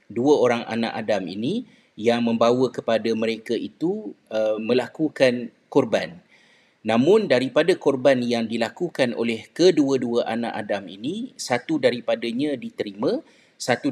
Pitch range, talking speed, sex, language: 115-160 Hz, 115 wpm, male, Malay